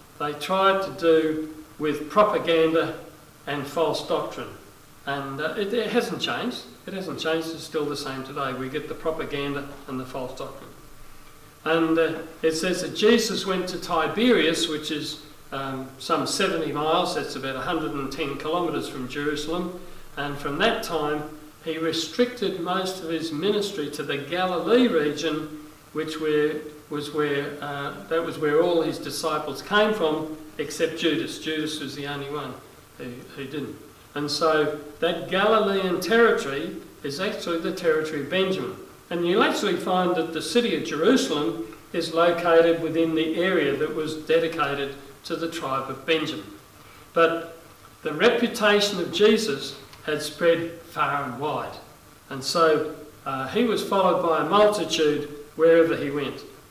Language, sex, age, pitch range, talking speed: English, male, 50-69, 150-175 Hz, 150 wpm